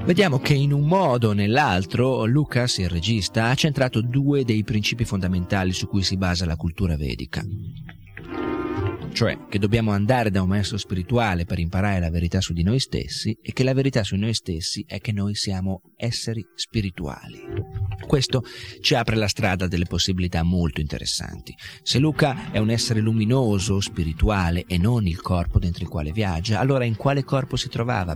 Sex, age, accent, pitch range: male, 40-59, native, 85-115 Hz